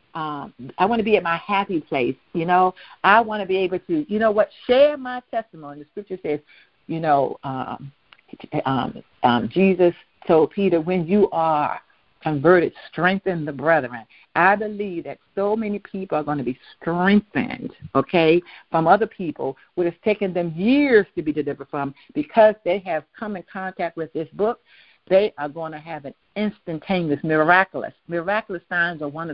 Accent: American